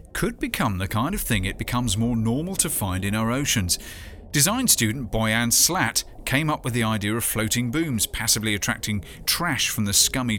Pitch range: 105-140 Hz